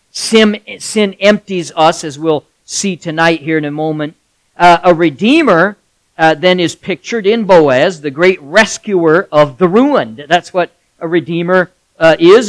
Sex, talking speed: male, 160 wpm